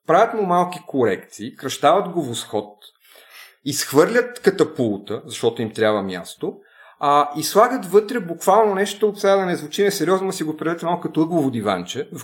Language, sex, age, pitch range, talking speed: Bulgarian, male, 30-49, 115-170 Hz, 155 wpm